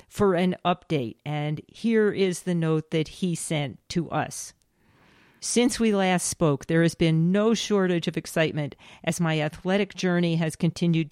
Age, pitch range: 50-69, 150-180 Hz